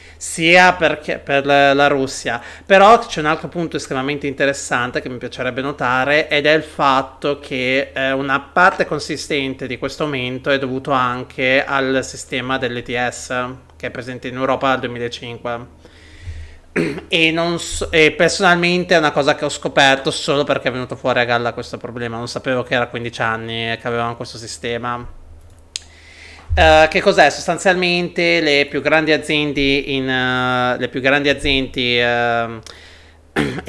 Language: Italian